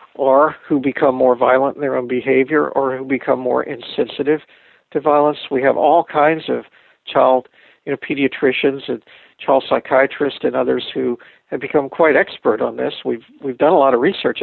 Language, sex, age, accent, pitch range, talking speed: English, male, 50-69, American, 130-150 Hz, 175 wpm